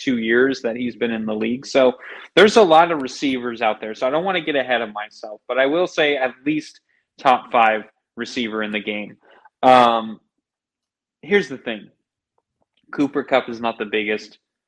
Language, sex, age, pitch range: English, male, 20-39, 115-150 Hz